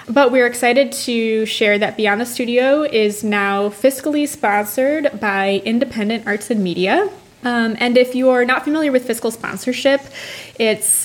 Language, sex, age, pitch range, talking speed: English, female, 20-39, 200-250 Hz, 155 wpm